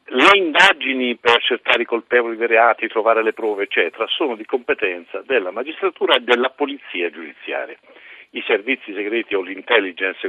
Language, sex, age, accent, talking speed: Italian, male, 50-69, native, 150 wpm